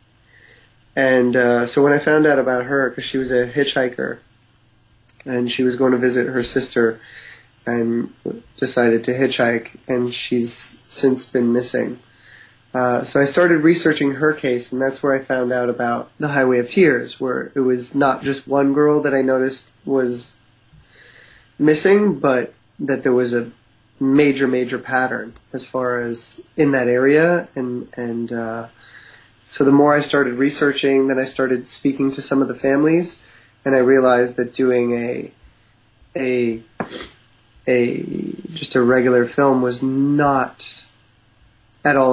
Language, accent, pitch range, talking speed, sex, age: English, American, 120-140 Hz, 155 wpm, male, 20-39